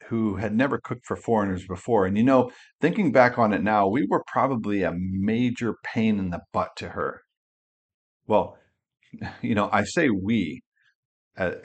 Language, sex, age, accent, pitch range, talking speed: English, male, 50-69, American, 95-115 Hz, 170 wpm